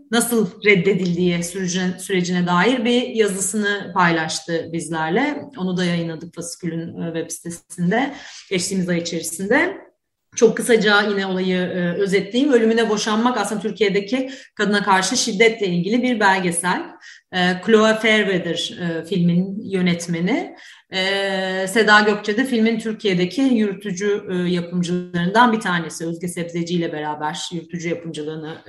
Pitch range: 175-230 Hz